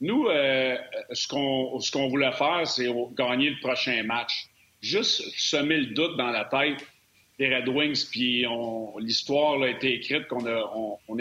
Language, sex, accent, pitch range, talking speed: French, male, Canadian, 120-155 Hz, 150 wpm